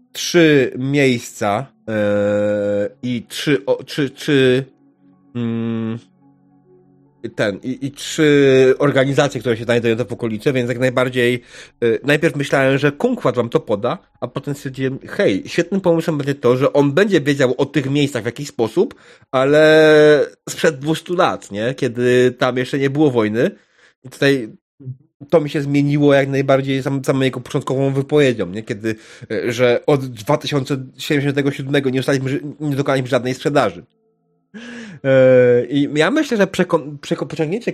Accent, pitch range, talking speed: native, 120-145 Hz, 130 wpm